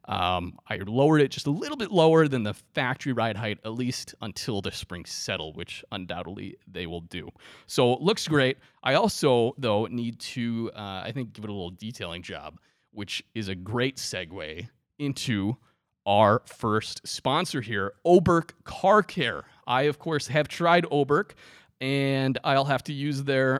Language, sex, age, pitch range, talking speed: English, male, 30-49, 110-155 Hz, 175 wpm